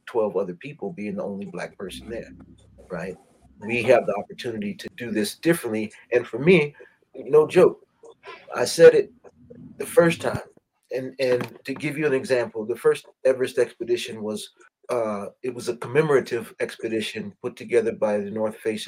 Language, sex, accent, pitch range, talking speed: English, male, American, 110-170 Hz, 170 wpm